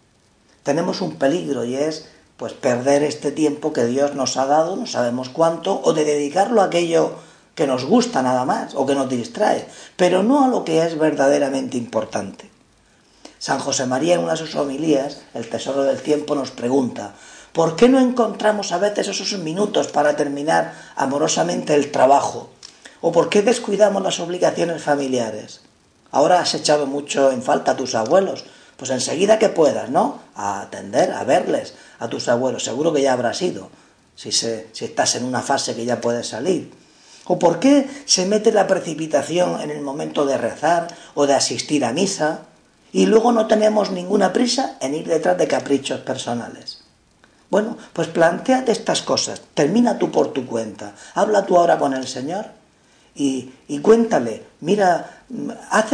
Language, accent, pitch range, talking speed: Spanish, Spanish, 135-195 Hz, 170 wpm